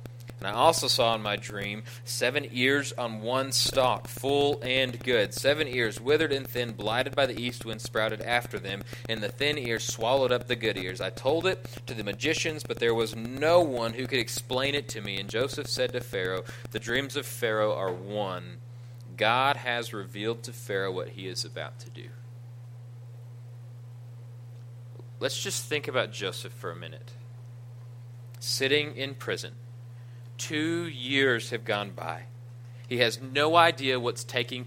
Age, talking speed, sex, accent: 30-49, 170 wpm, male, American